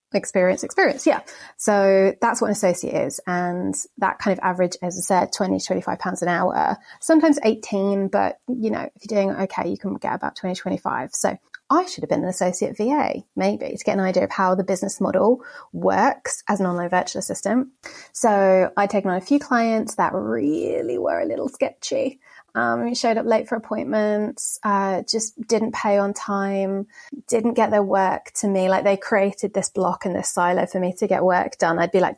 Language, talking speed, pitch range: English, 210 wpm, 190-240 Hz